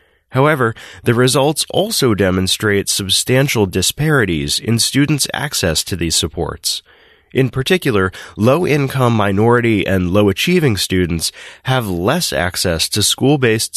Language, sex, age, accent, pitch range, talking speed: English, male, 20-39, American, 95-130 Hz, 110 wpm